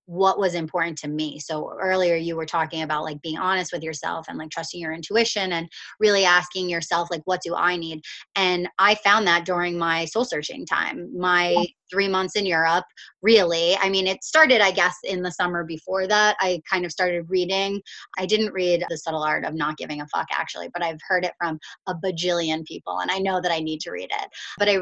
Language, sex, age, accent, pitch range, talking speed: English, female, 20-39, American, 170-205 Hz, 220 wpm